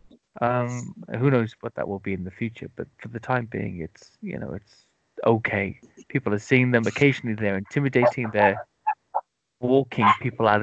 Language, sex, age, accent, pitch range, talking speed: English, male, 30-49, British, 105-130 Hz, 175 wpm